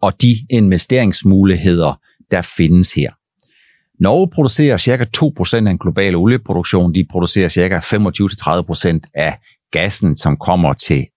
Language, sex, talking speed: Danish, male, 125 wpm